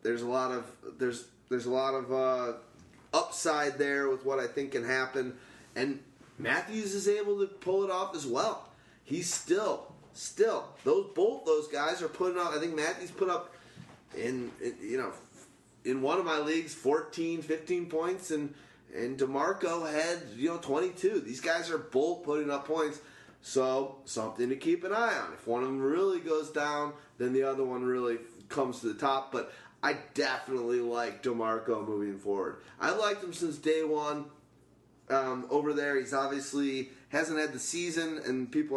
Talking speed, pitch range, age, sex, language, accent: 180 wpm, 125-160 Hz, 30-49, male, English, American